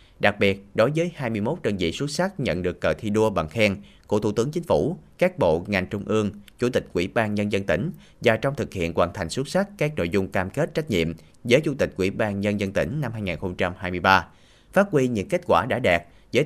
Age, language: 20-39, Vietnamese